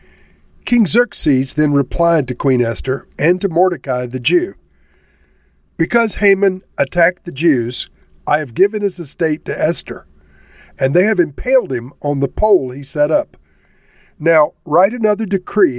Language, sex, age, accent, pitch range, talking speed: English, male, 50-69, American, 130-185 Hz, 150 wpm